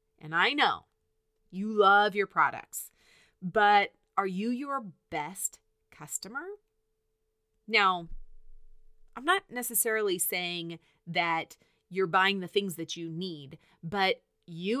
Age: 30-49